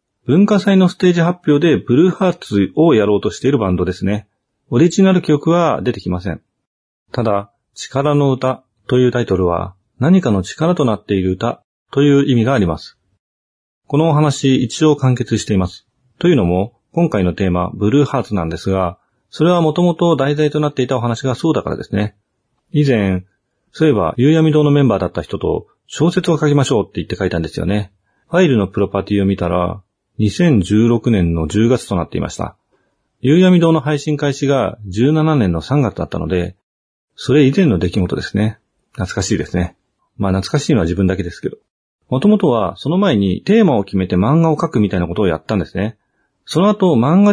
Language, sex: Japanese, male